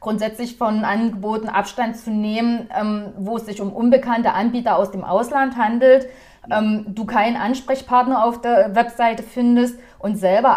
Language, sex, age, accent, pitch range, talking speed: German, female, 30-49, German, 200-240 Hz, 140 wpm